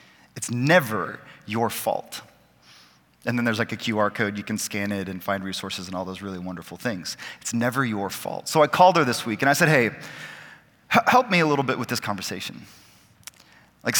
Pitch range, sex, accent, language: 110-150 Hz, male, American, English